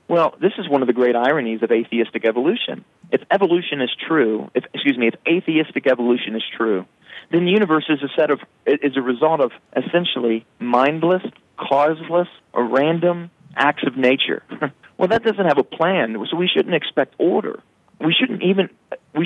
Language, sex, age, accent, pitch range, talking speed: English, male, 40-59, American, 120-160 Hz, 180 wpm